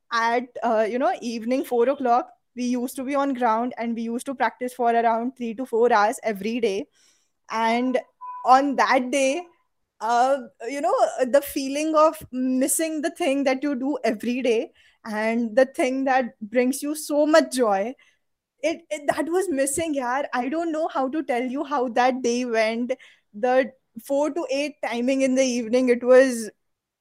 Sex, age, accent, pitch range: female, 10-29, Indian, 230-285 Hz